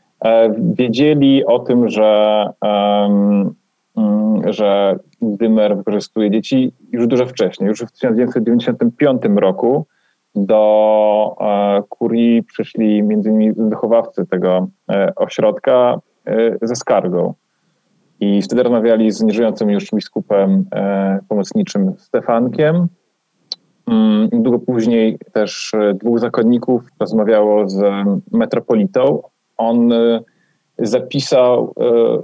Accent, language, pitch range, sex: native, Polish, 105-140 Hz, male